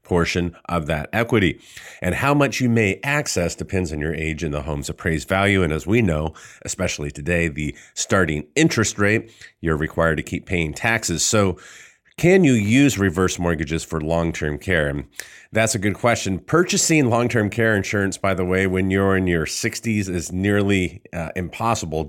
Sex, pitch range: male, 85-105 Hz